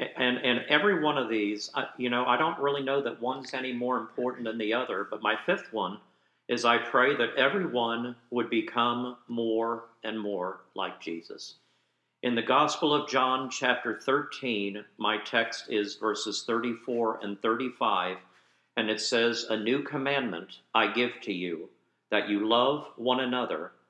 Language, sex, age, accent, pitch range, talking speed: English, male, 50-69, American, 110-135 Hz, 165 wpm